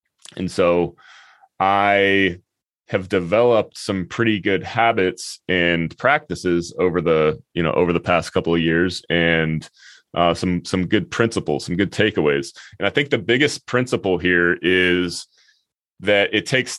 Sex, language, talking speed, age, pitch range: male, English, 145 wpm, 30-49, 85-100 Hz